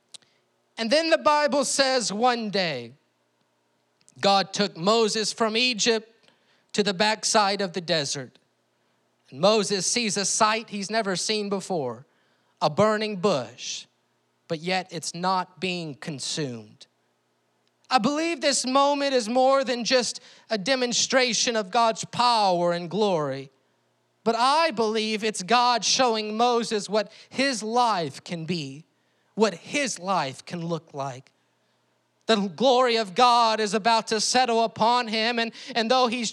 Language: English